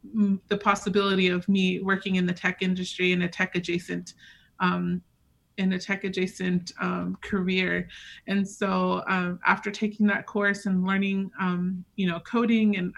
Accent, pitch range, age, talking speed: American, 185-205 Hz, 30-49, 175 wpm